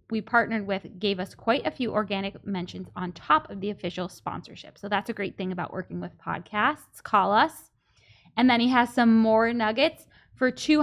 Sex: female